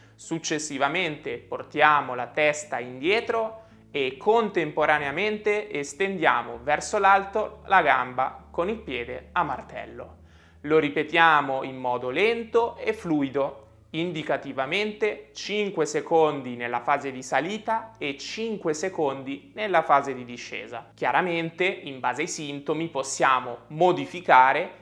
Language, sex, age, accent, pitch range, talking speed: Italian, male, 20-39, native, 135-195 Hz, 110 wpm